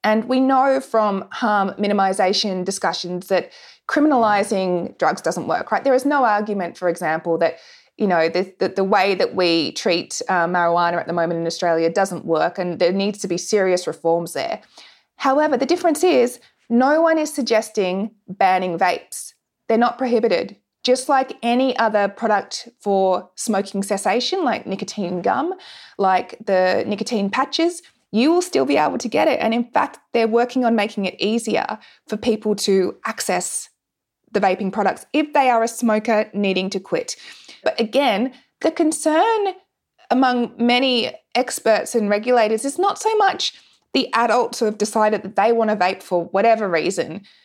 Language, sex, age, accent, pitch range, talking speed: English, female, 20-39, Australian, 195-260 Hz, 165 wpm